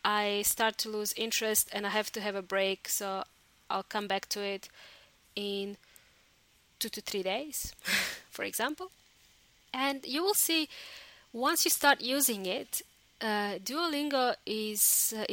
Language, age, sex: English, 20-39, female